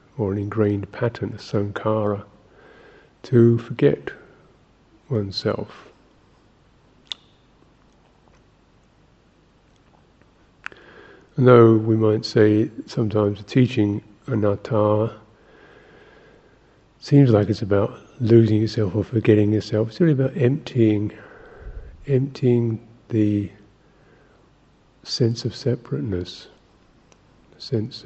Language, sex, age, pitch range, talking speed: English, male, 50-69, 100-120 Hz, 80 wpm